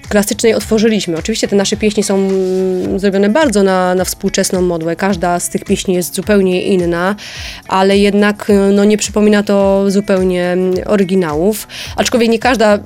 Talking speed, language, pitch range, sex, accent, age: 140 wpm, Polish, 190-220 Hz, female, native, 20-39